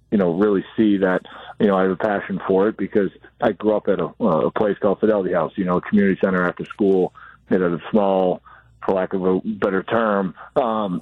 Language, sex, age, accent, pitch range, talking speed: English, male, 40-59, American, 95-105 Hz, 235 wpm